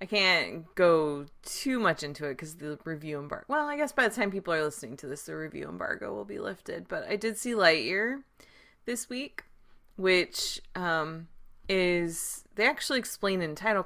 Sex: female